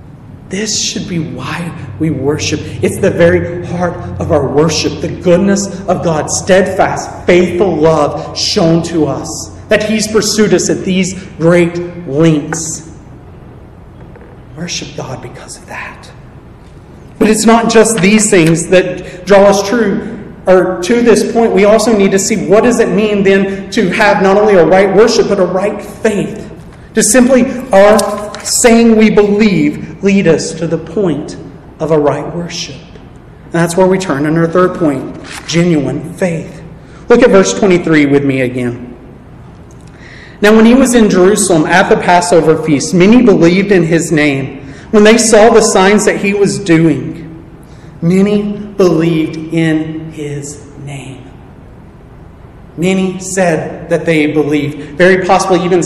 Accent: American